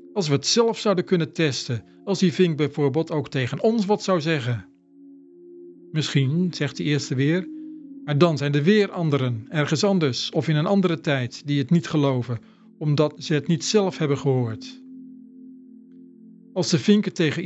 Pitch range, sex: 120-190 Hz, male